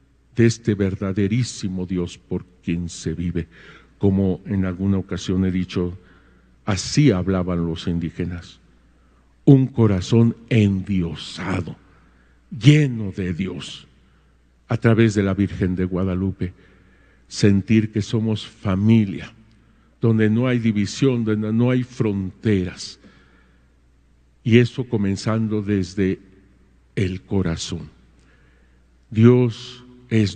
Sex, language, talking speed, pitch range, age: male, English, 100 wpm, 70-110 Hz, 50-69